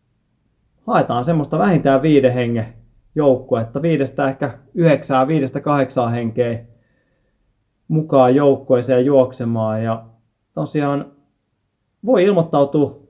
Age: 30-49